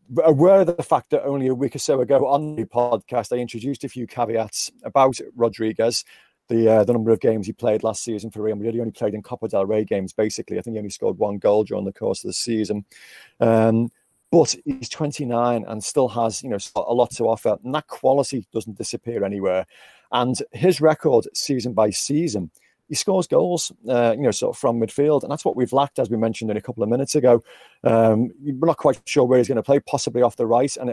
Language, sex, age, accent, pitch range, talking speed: English, male, 30-49, British, 115-145 Hz, 235 wpm